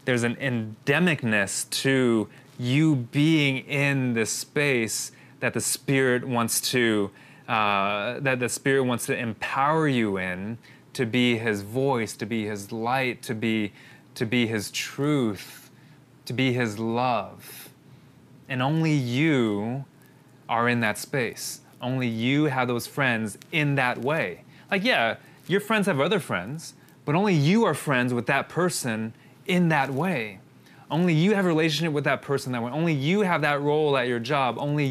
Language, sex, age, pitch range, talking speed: English, male, 20-39, 120-145 Hz, 160 wpm